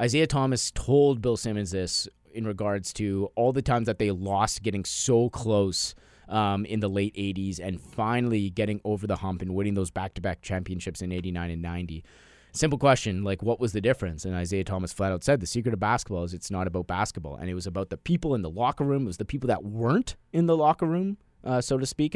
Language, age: English, 30-49